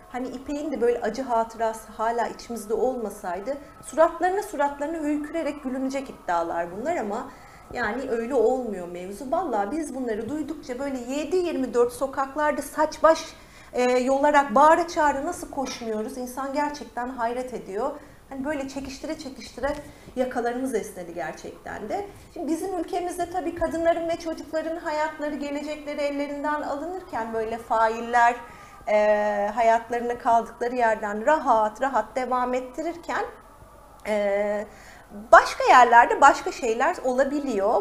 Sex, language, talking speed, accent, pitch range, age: female, Turkish, 115 wpm, native, 230-305 Hz, 40-59